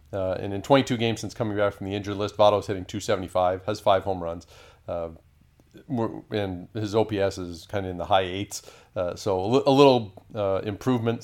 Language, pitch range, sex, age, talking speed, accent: English, 95-110 Hz, male, 40-59, 215 wpm, American